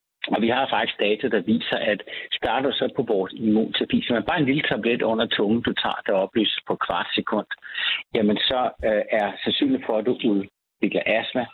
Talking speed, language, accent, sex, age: 200 wpm, Danish, native, male, 60-79